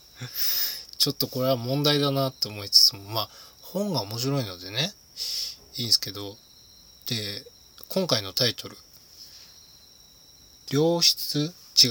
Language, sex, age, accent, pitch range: Japanese, male, 20-39, native, 100-150 Hz